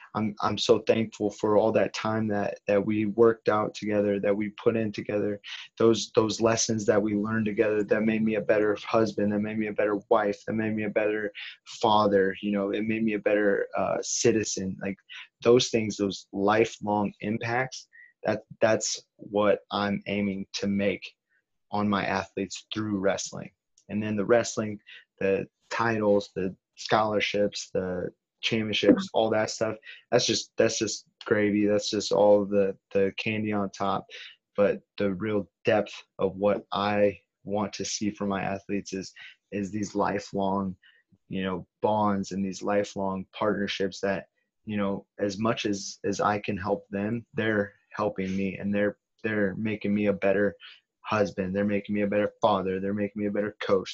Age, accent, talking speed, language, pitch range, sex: 20-39, American, 175 wpm, English, 100-105 Hz, male